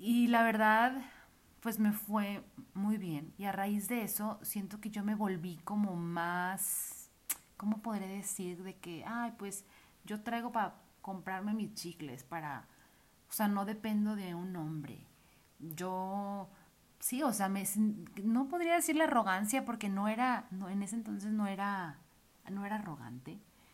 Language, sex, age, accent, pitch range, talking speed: Spanish, female, 30-49, Mexican, 180-230 Hz, 160 wpm